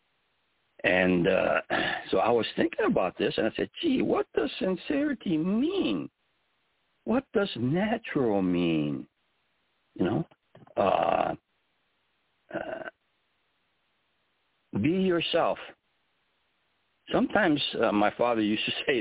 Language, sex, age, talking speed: English, male, 60-79, 105 wpm